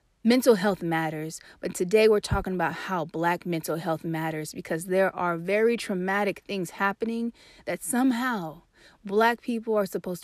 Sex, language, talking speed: female, English, 150 wpm